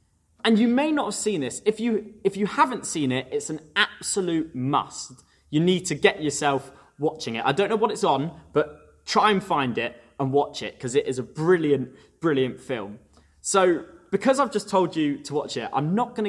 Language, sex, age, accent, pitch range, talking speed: English, male, 20-39, British, 120-200 Hz, 210 wpm